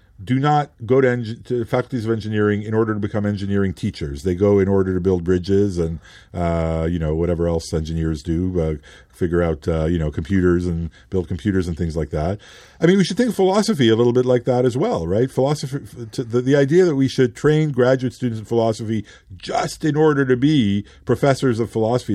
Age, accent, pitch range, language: 50-69, American, 95-130 Hz, English